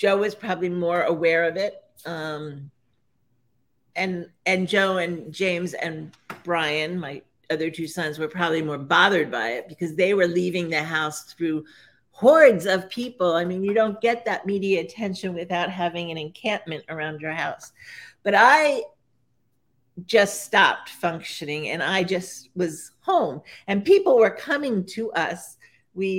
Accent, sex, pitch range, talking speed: American, female, 155-190 Hz, 155 wpm